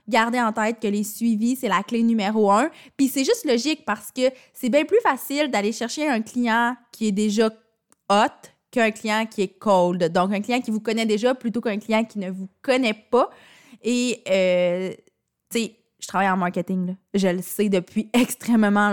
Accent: Canadian